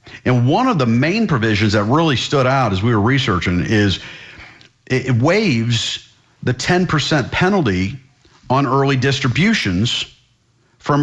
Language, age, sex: English, 50-69, male